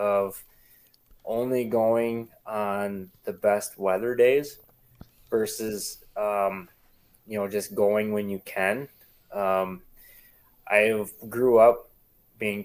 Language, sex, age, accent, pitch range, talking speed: English, male, 20-39, American, 100-110 Hz, 105 wpm